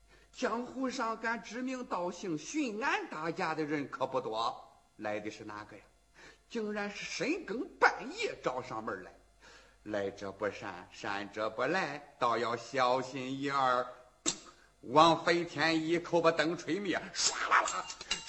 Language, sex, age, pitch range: Chinese, male, 50-69, 180-260 Hz